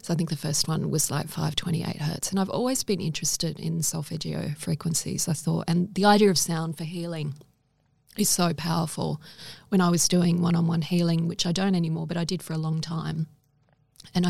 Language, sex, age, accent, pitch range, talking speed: English, female, 30-49, Australian, 160-180 Hz, 200 wpm